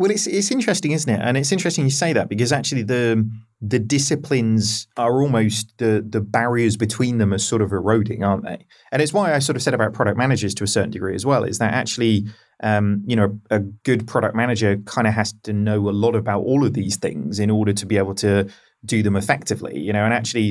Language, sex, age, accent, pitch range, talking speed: English, male, 30-49, British, 105-120 Hz, 235 wpm